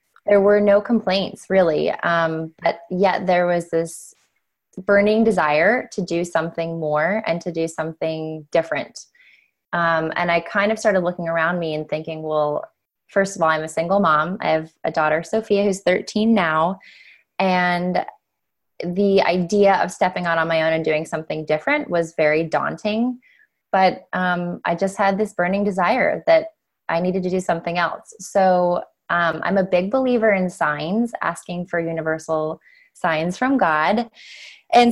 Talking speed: 165 wpm